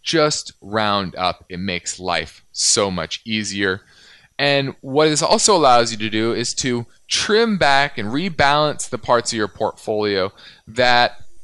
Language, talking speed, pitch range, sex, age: English, 150 wpm, 105-150 Hz, male, 20-39